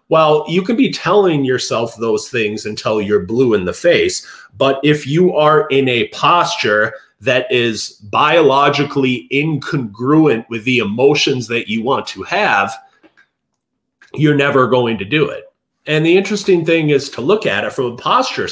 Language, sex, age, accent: English, male, 30-49, American